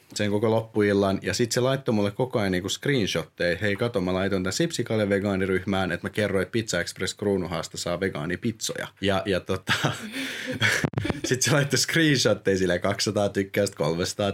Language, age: Finnish, 30-49